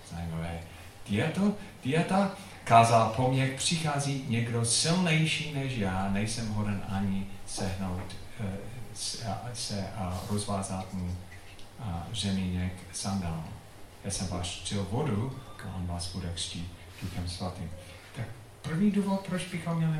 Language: Czech